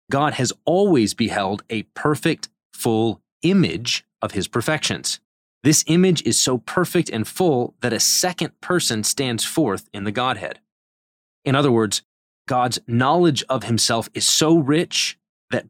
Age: 30-49